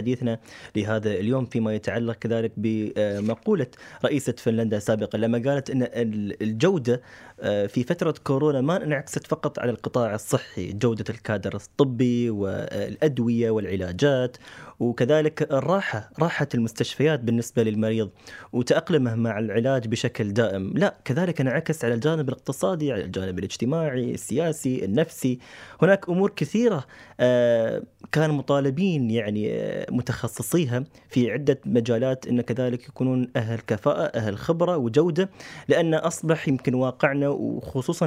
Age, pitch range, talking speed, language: 20-39, 115-155 Hz, 115 wpm, Arabic